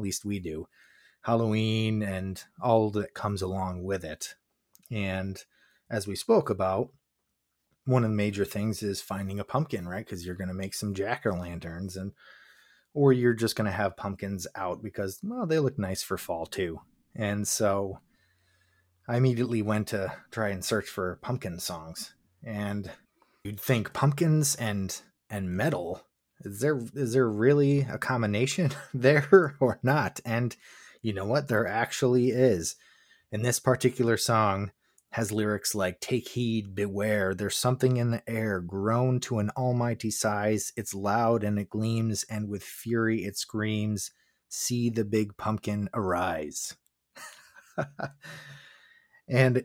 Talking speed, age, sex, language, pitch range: 145 wpm, 20-39, male, English, 95-125 Hz